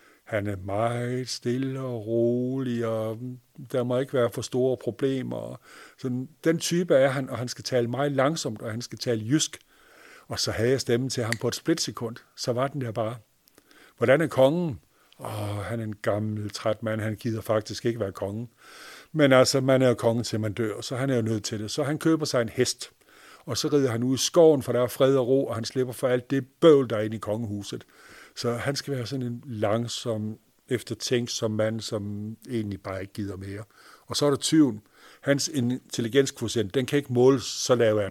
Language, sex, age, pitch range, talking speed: Danish, male, 60-79, 110-135 Hz, 215 wpm